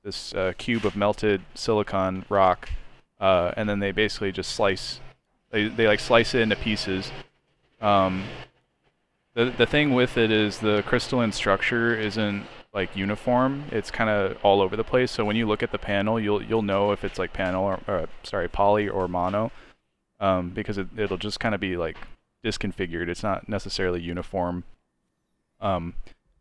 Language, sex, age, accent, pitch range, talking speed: English, male, 20-39, American, 95-110 Hz, 175 wpm